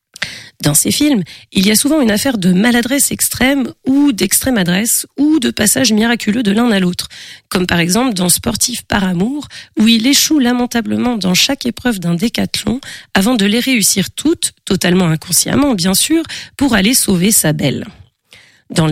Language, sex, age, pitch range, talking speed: French, female, 40-59, 180-245 Hz, 170 wpm